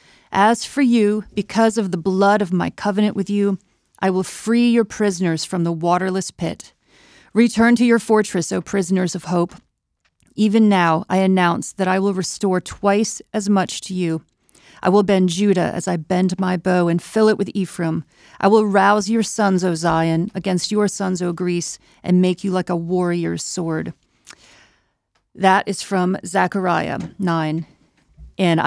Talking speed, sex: 170 wpm, female